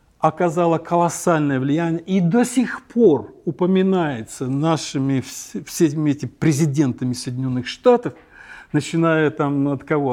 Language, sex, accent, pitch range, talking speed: Russian, male, native, 140-185 Hz, 105 wpm